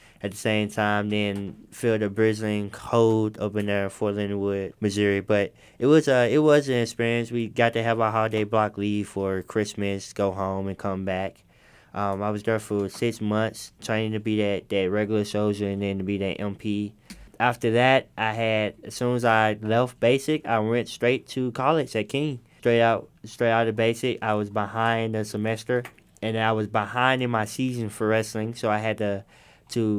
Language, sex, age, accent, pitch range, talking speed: English, male, 20-39, American, 100-115 Hz, 200 wpm